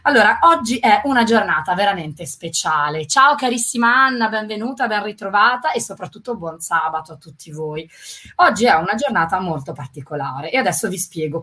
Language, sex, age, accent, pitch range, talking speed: Italian, female, 20-39, native, 165-240 Hz, 160 wpm